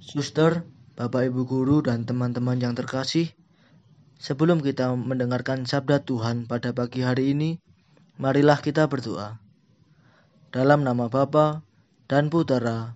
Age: 20-39